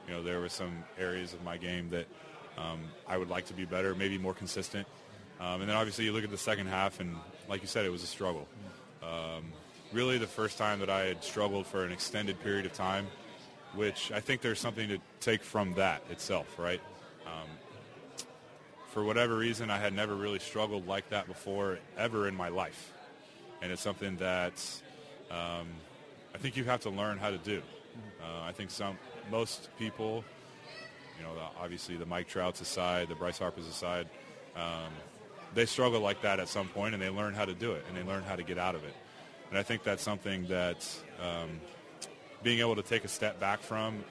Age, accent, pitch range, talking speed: 30-49, American, 90-105 Hz, 205 wpm